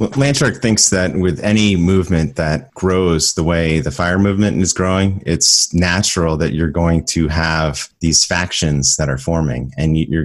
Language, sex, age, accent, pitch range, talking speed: English, male, 30-49, American, 75-95 Hz, 170 wpm